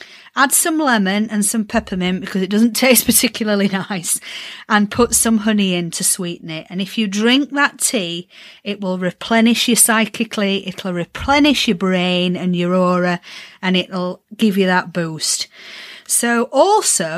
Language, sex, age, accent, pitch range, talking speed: English, female, 40-59, British, 185-240 Hz, 170 wpm